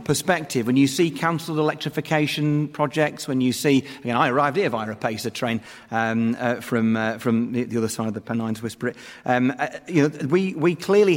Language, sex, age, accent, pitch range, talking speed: English, male, 40-59, British, 125-175 Hz, 200 wpm